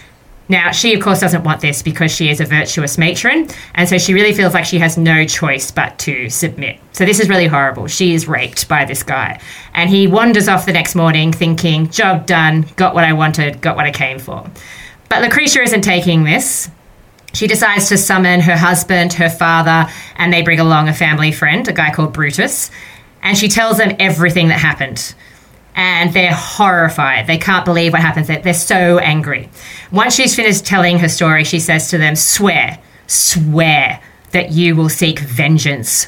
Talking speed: 190 wpm